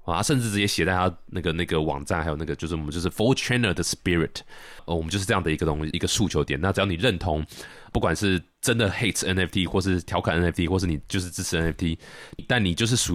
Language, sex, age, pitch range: Chinese, male, 20-39, 80-105 Hz